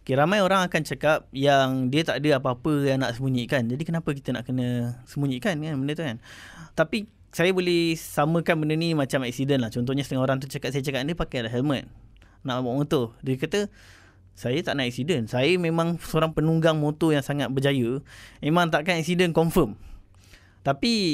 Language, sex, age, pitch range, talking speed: English, male, 20-39, 125-160 Hz, 185 wpm